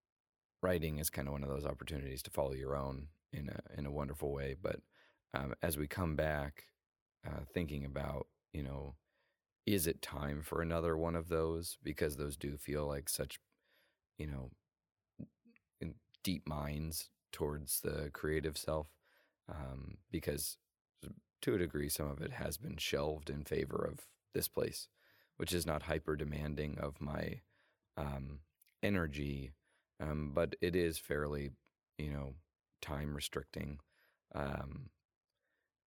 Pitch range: 70-85 Hz